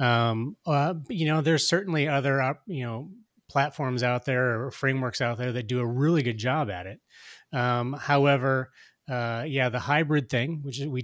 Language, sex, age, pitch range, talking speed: English, male, 30-49, 115-150 Hz, 185 wpm